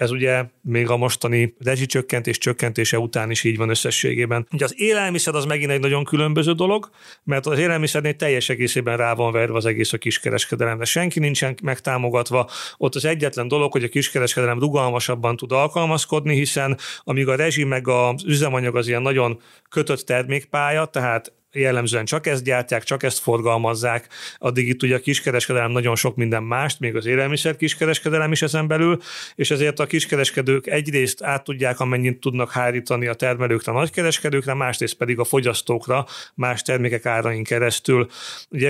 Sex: male